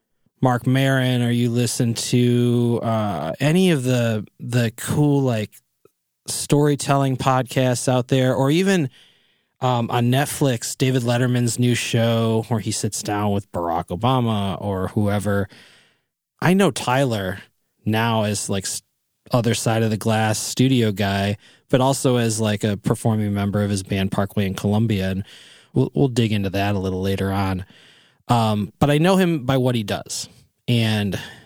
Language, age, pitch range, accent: English, 20-39, 105-130 Hz, American